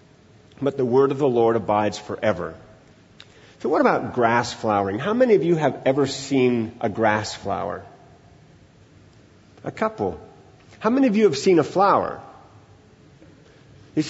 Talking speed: 145 wpm